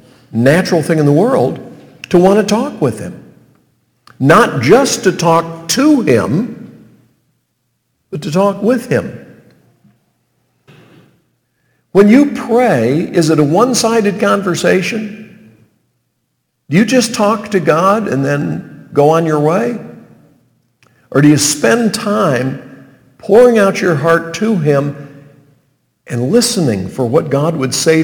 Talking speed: 130 wpm